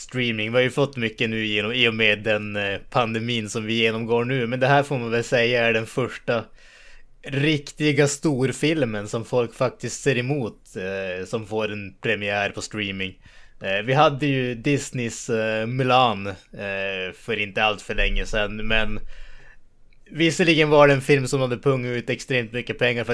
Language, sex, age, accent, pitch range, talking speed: Swedish, male, 20-39, Norwegian, 105-135 Hz, 180 wpm